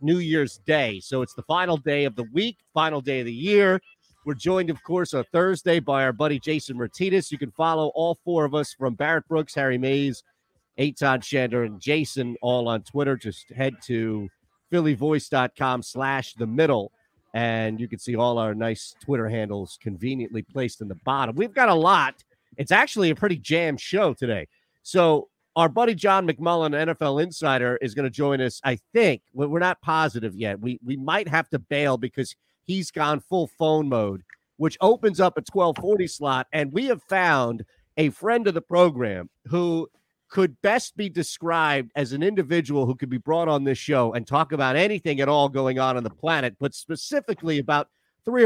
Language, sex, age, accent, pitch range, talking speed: English, male, 40-59, American, 130-170 Hz, 190 wpm